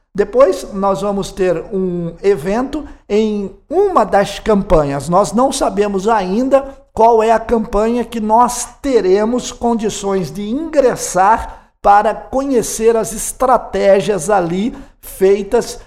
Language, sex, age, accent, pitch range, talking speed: Portuguese, male, 50-69, Brazilian, 190-245 Hz, 115 wpm